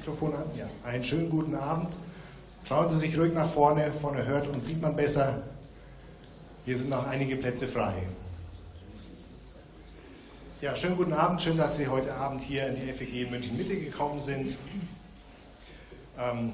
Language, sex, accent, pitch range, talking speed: German, male, German, 110-140 Hz, 145 wpm